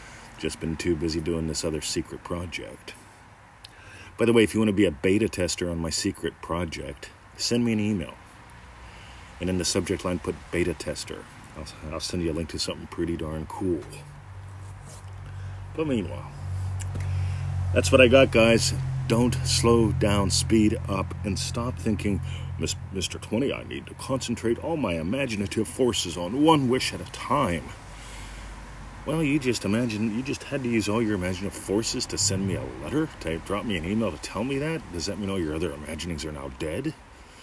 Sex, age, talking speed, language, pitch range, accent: male, 40-59, 185 wpm, English, 85-115 Hz, American